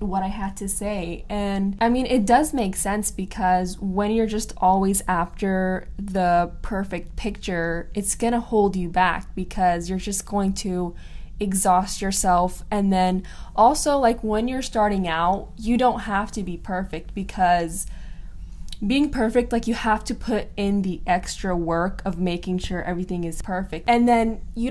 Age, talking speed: 10-29, 165 wpm